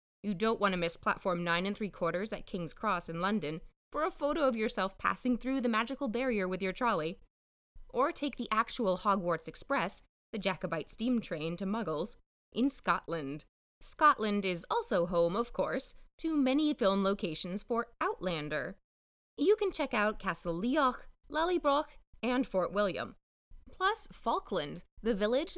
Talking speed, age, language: 160 wpm, 20-39, English